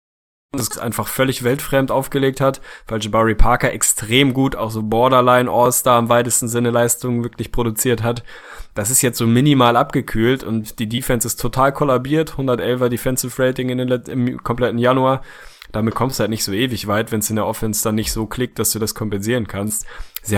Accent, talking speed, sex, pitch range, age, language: German, 185 wpm, male, 110-125 Hz, 10-29, German